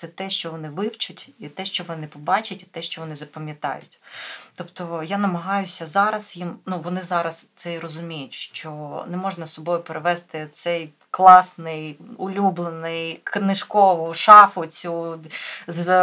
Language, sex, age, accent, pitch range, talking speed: Ukrainian, female, 30-49, native, 165-195 Hz, 145 wpm